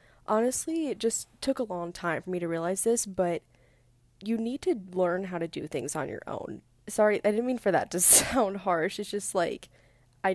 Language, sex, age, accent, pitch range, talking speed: English, female, 10-29, American, 160-210 Hz, 215 wpm